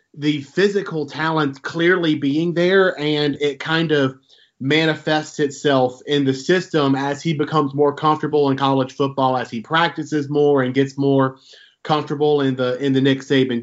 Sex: male